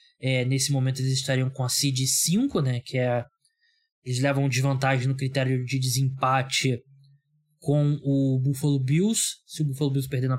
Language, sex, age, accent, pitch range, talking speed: Portuguese, male, 20-39, Brazilian, 135-175 Hz, 175 wpm